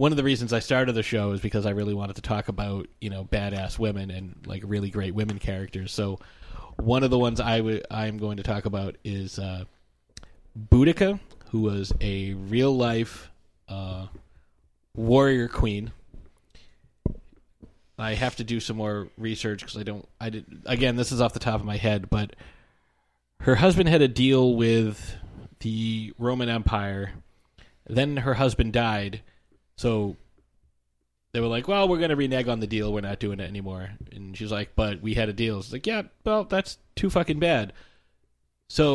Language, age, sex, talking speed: English, 30-49, male, 180 wpm